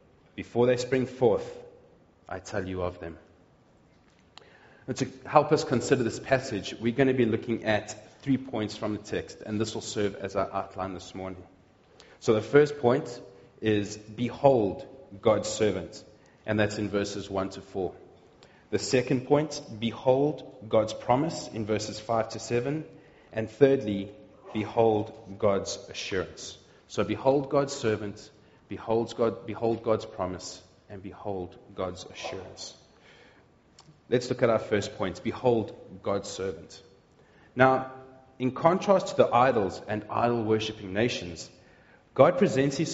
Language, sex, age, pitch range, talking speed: English, male, 30-49, 105-135 Hz, 140 wpm